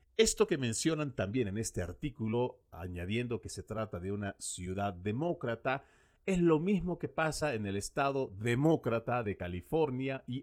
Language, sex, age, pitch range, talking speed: Spanish, male, 50-69, 105-150 Hz, 155 wpm